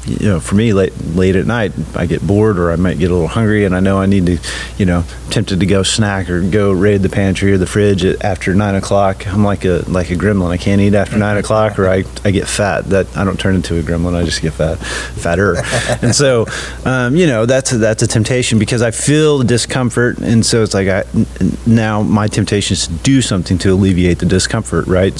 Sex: male